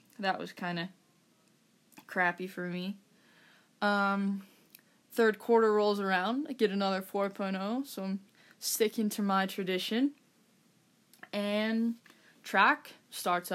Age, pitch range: 10-29, 185-215 Hz